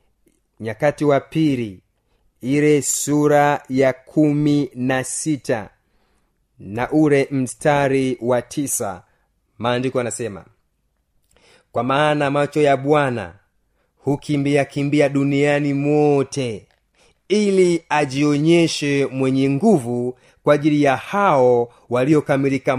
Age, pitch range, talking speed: 30-49, 125-155 Hz, 85 wpm